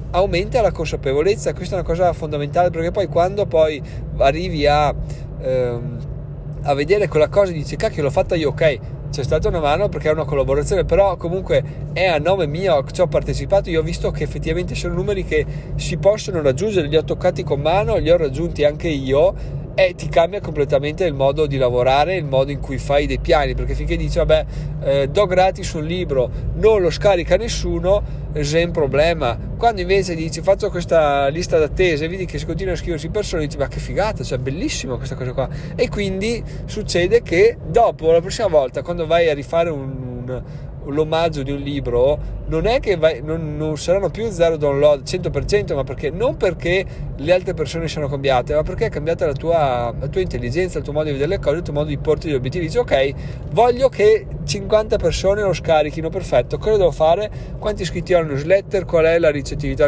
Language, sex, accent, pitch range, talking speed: Italian, male, native, 145-180 Hz, 200 wpm